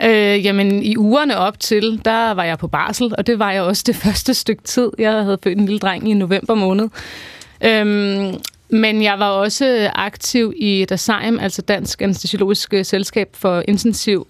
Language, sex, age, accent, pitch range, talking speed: Danish, female, 30-49, native, 200-235 Hz, 180 wpm